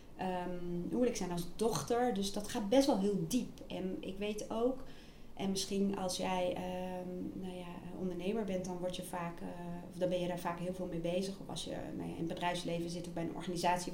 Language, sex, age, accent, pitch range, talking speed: Dutch, female, 30-49, Dutch, 180-225 Hz, 235 wpm